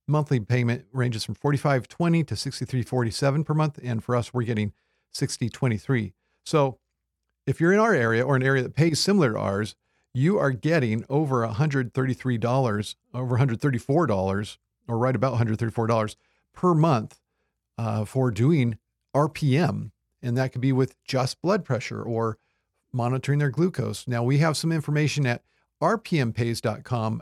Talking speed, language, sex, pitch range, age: 145 wpm, English, male, 115-140 Hz, 50-69